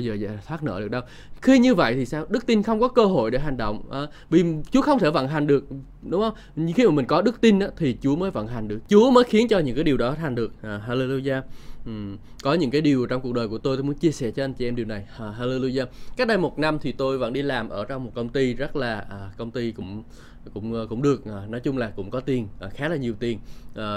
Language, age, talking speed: Vietnamese, 20-39, 285 wpm